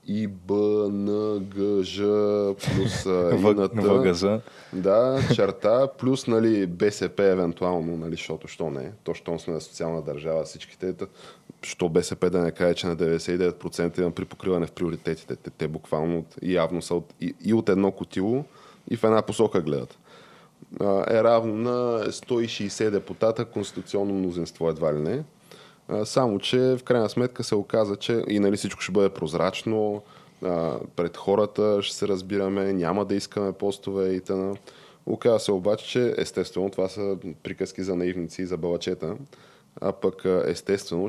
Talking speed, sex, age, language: 150 wpm, male, 20-39, Bulgarian